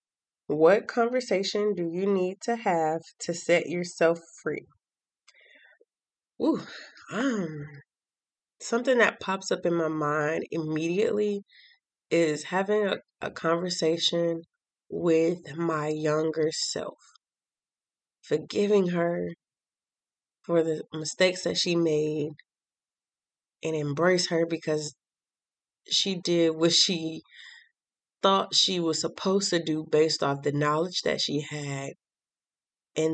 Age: 20-39